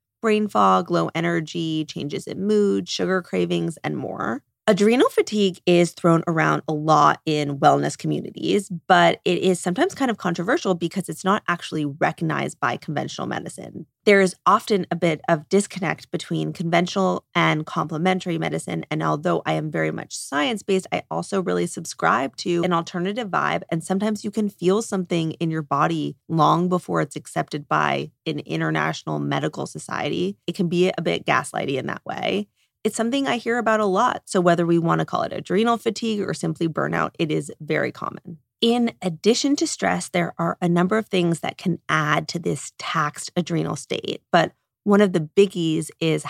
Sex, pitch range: female, 150-190 Hz